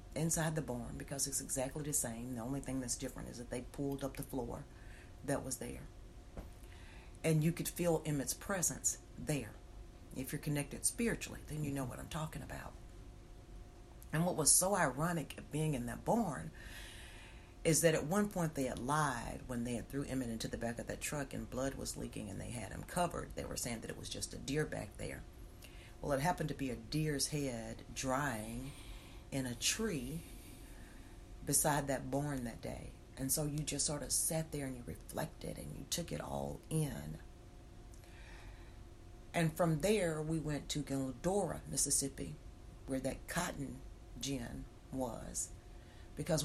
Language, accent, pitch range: English, American, 115-150 Hz